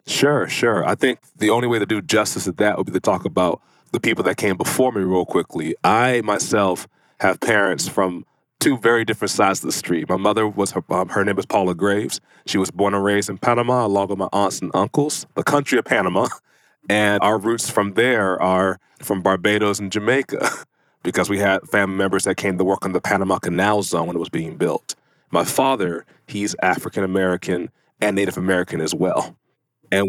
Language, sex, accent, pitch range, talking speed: English, male, American, 95-110 Hz, 200 wpm